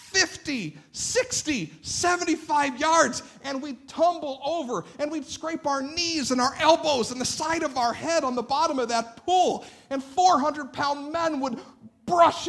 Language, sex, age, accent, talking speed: English, male, 50-69, American, 160 wpm